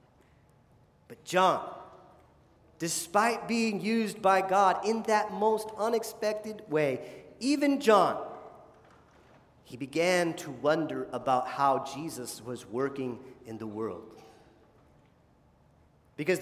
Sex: male